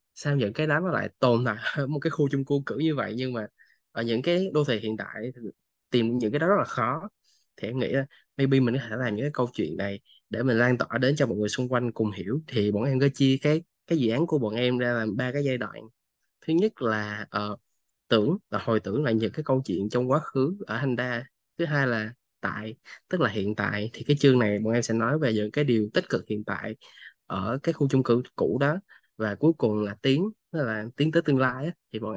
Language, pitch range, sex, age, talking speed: Vietnamese, 110-140 Hz, male, 20-39, 265 wpm